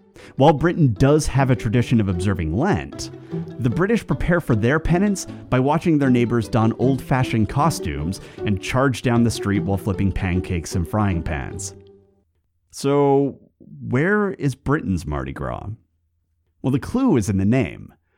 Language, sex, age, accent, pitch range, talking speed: English, male, 30-49, American, 90-125 Hz, 150 wpm